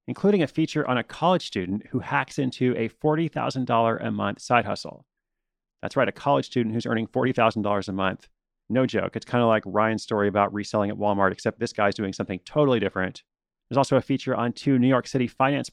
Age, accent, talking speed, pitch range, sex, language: 30-49, American, 210 wpm, 105-130 Hz, male, English